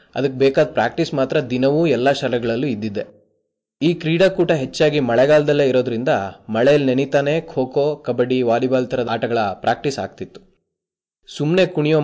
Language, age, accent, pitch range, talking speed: Kannada, 20-39, native, 125-150 Hz, 125 wpm